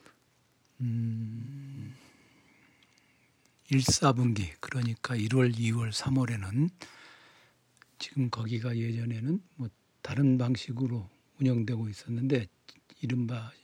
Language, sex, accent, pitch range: Korean, male, native, 115-140 Hz